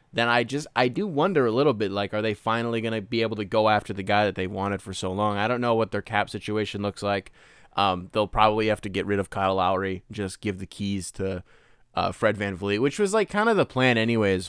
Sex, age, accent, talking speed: male, 20-39, American, 260 wpm